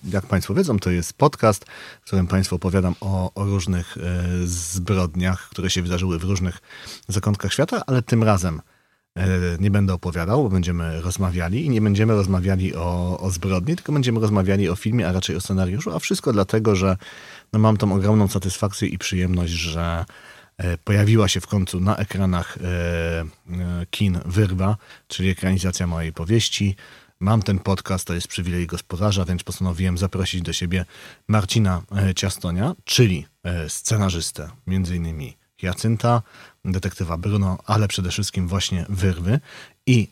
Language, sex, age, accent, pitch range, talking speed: Polish, male, 40-59, native, 90-105 Hz, 140 wpm